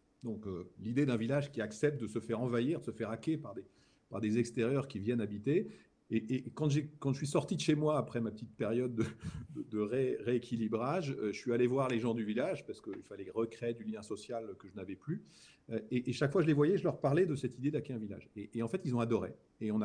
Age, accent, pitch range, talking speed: 50-69, French, 110-135 Hz, 265 wpm